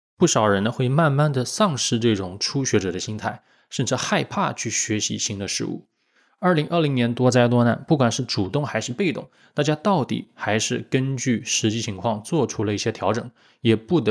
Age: 20-39